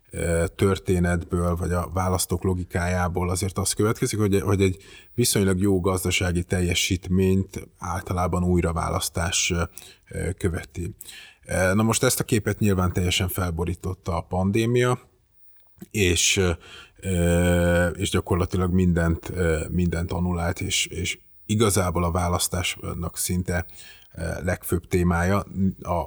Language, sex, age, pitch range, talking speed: Hungarian, male, 30-49, 85-95 Hz, 95 wpm